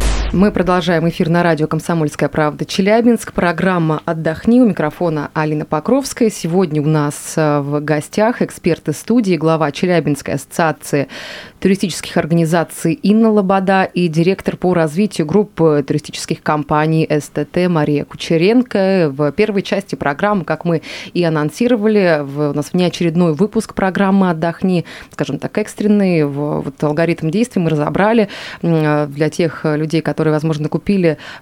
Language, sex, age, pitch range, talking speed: Russian, female, 20-39, 155-200 Hz, 130 wpm